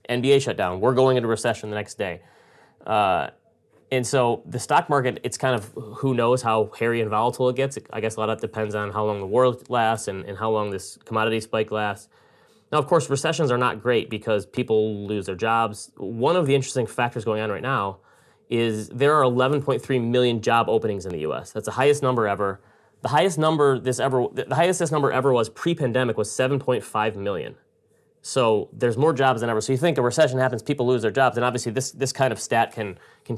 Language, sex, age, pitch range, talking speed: English, male, 30-49, 110-130 Hz, 225 wpm